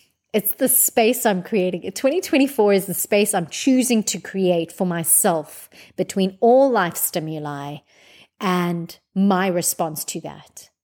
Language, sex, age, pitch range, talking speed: English, female, 30-49, 175-205 Hz, 135 wpm